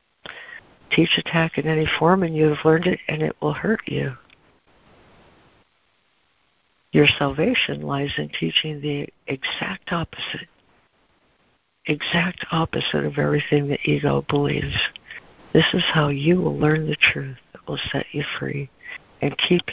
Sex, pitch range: female, 140-160 Hz